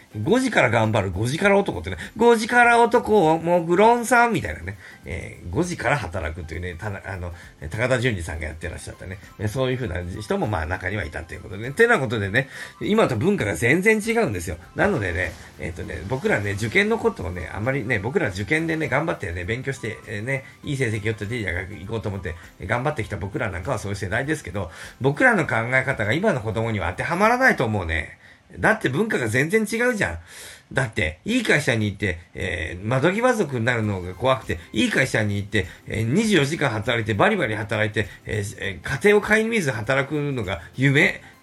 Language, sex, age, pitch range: Japanese, male, 40-59, 95-150 Hz